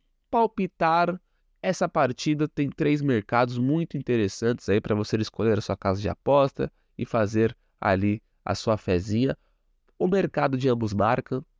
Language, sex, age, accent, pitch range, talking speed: Portuguese, male, 20-39, Brazilian, 105-150 Hz, 145 wpm